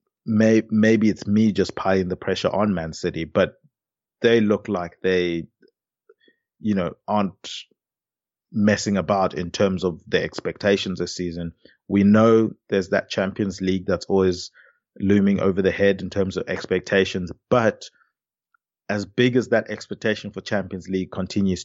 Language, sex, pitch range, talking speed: English, male, 95-110 Hz, 145 wpm